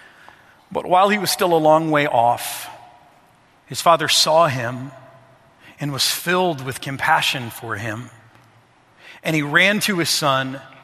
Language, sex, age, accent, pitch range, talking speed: English, male, 40-59, American, 135-170 Hz, 145 wpm